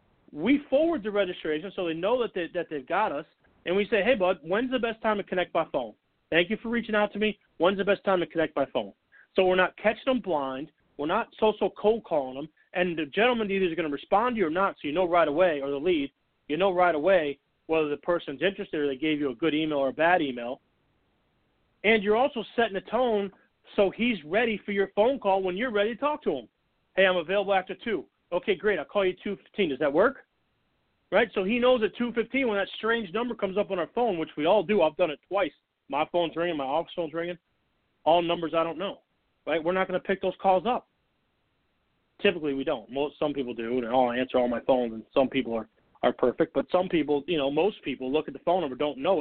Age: 40-59